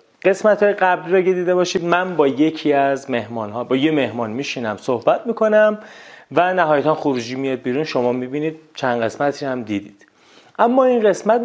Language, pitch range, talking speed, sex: Persian, 120-160 Hz, 175 wpm, male